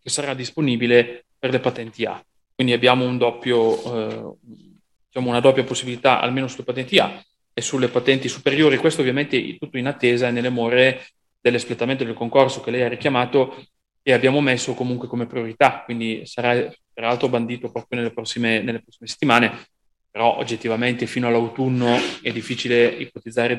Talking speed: 160 wpm